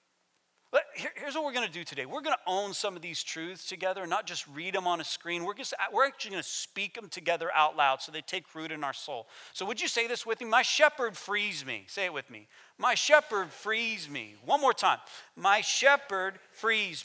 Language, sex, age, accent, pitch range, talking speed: English, male, 40-59, American, 155-230 Hz, 240 wpm